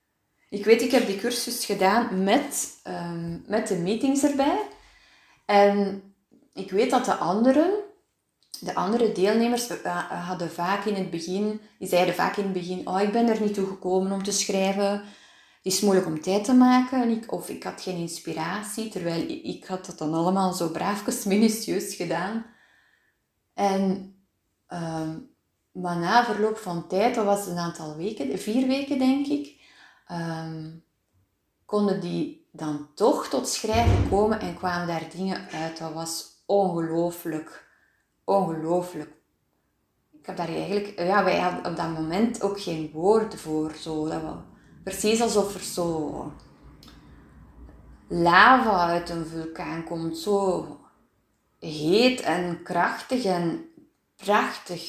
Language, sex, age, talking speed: Dutch, female, 20-39, 145 wpm